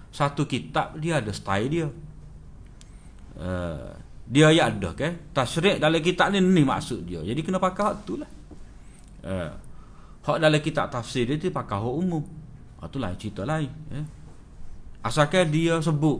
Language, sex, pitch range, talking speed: Malay, male, 120-155 Hz, 150 wpm